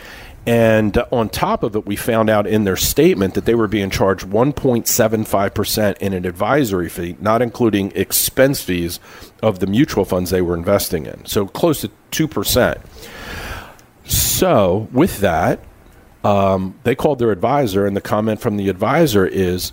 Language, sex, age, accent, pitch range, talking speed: English, male, 50-69, American, 95-120 Hz, 160 wpm